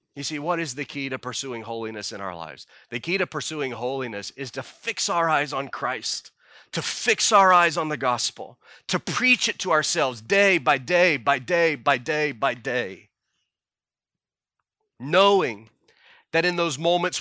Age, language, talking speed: 30-49, English, 175 wpm